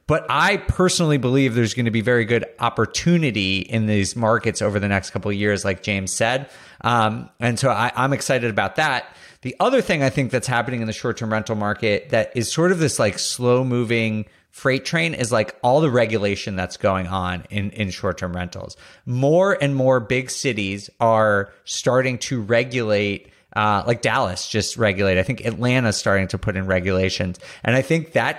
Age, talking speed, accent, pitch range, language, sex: 30-49, 190 wpm, American, 105-130 Hz, English, male